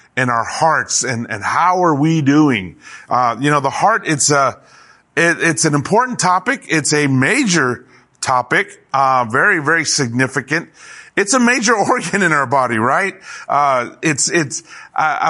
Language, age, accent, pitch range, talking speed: English, 30-49, American, 135-180 Hz, 160 wpm